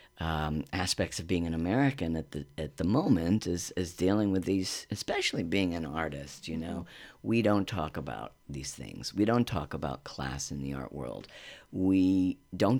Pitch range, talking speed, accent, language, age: 80-95 Hz, 185 wpm, American, English, 50-69